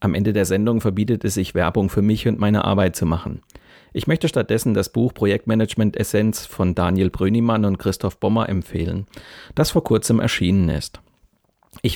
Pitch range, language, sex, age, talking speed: 95-120 Hz, German, male, 40-59, 170 wpm